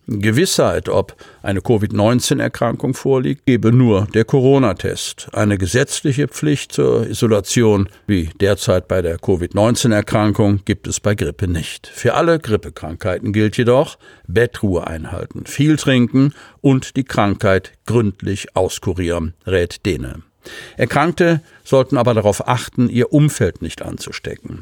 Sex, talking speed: male, 120 wpm